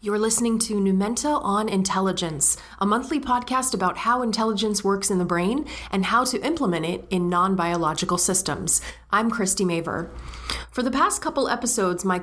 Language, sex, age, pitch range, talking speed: English, female, 30-49, 175-225 Hz, 160 wpm